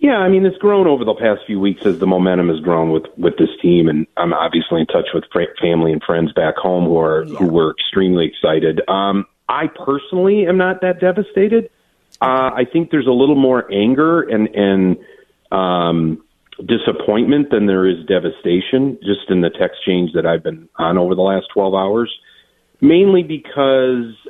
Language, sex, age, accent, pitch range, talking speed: English, male, 40-59, American, 90-125 Hz, 185 wpm